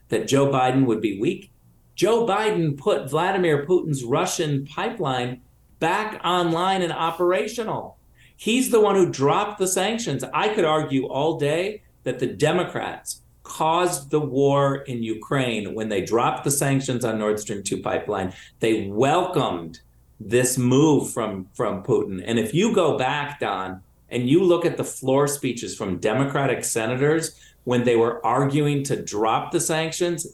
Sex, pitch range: male, 120-160 Hz